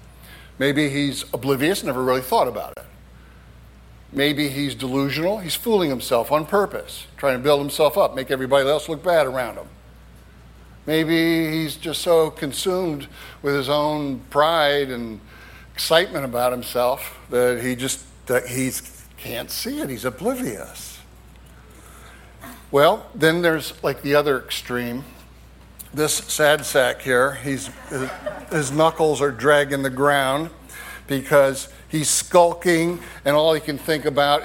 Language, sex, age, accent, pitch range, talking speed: English, male, 60-79, American, 125-150 Hz, 135 wpm